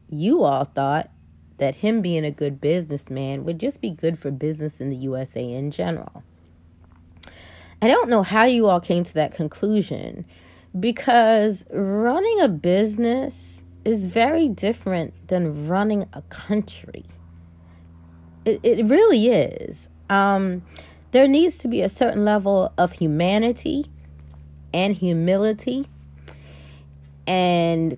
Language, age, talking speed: English, 30-49, 125 wpm